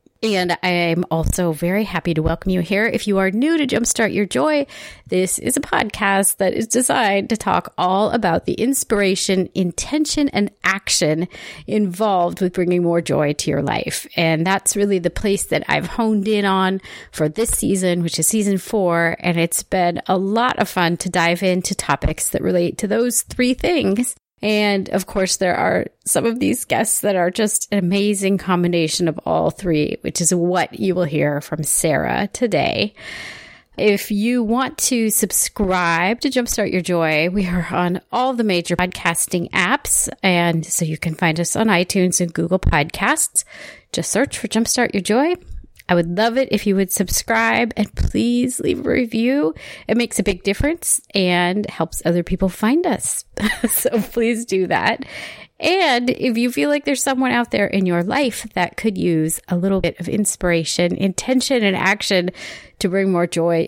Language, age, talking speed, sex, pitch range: English, 30-49, 180 wpm, female, 175-225 Hz